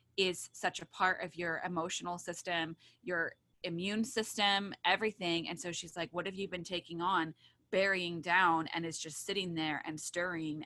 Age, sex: 20-39, female